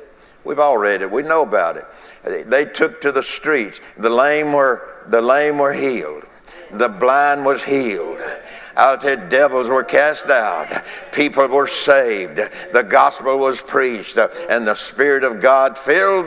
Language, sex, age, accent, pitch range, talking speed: English, male, 60-79, American, 135-185 Hz, 160 wpm